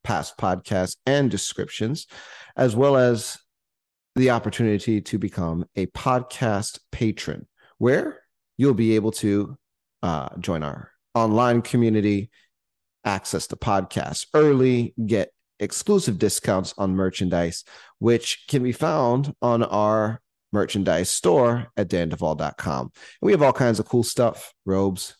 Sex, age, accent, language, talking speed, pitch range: male, 30-49, American, English, 120 wpm, 100-130 Hz